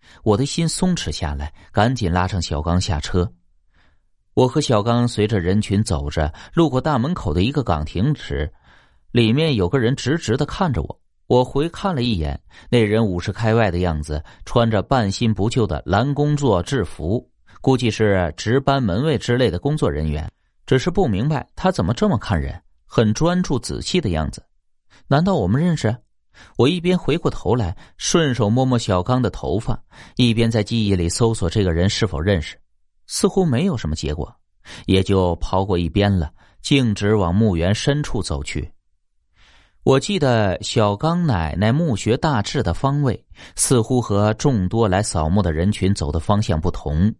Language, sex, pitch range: Chinese, male, 90-130 Hz